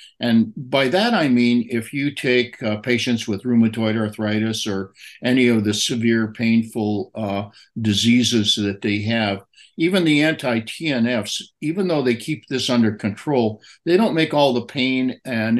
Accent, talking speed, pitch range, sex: American, 160 wpm, 110-130 Hz, male